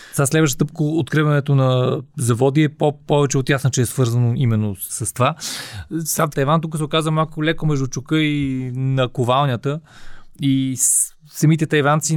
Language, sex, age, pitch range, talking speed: Bulgarian, male, 30-49, 125-155 Hz, 160 wpm